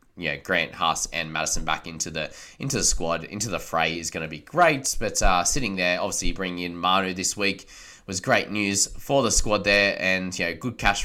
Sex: male